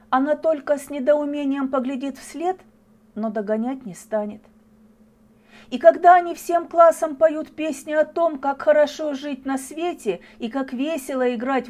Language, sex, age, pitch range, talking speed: Russian, female, 40-59, 220-275 Hz, 145 wpm